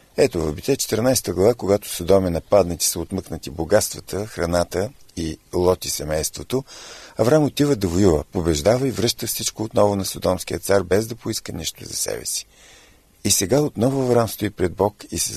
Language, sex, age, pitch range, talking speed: Bulgarian, male, 50-69, 85-115 Hz, 165 wpm